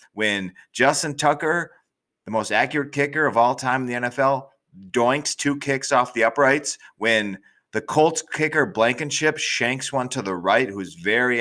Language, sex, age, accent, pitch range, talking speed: English, male, 30-49, American, 100-130 Hz, 165 wpm